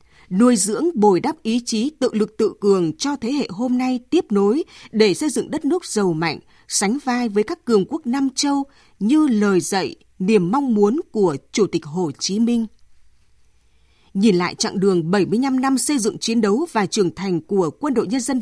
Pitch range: 190-275 Hz